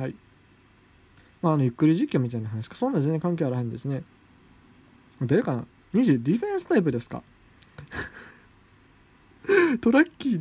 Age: 20-39